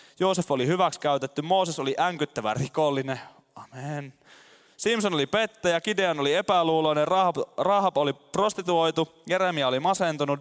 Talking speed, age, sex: 120 wpm, 20-39, male